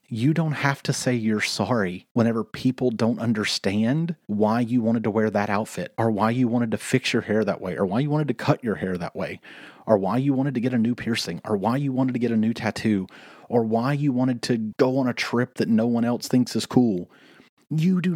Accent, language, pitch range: American, English, 105-130 Hz